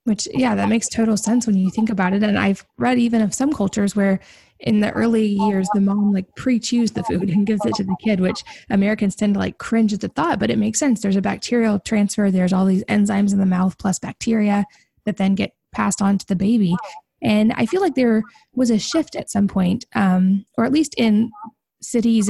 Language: English